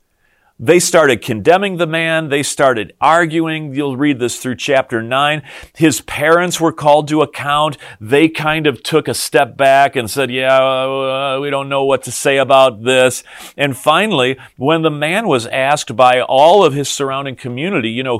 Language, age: English, 40-59